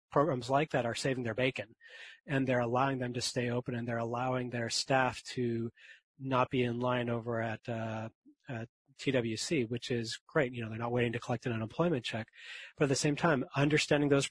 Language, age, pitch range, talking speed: English, 30-49, 120-140 Hz, 205 wpm